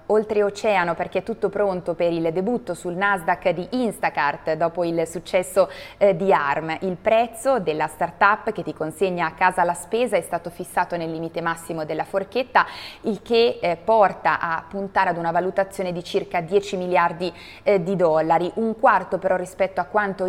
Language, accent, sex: Italian, native, female